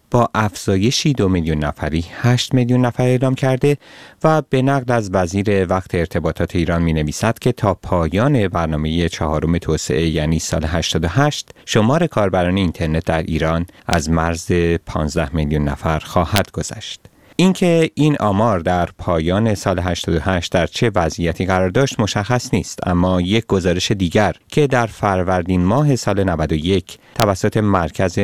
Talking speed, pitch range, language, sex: 140 wpm, 85-125 Hz, Persian, male